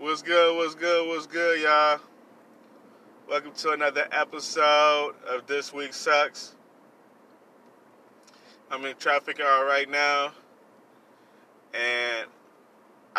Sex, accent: male, American